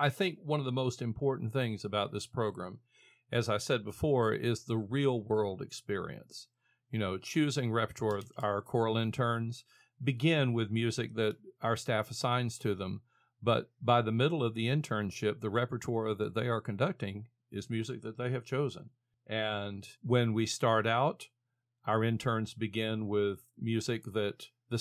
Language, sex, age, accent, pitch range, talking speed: English, male, 50-69, American, 105-125 Hz, 165 wpm